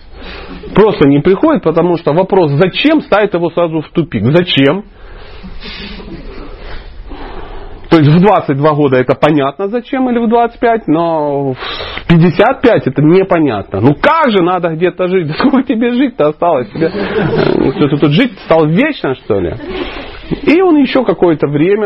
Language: Russian